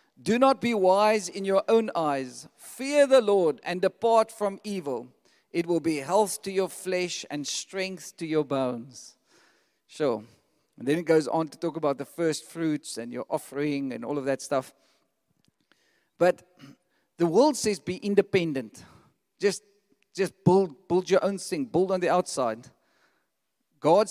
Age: 50-69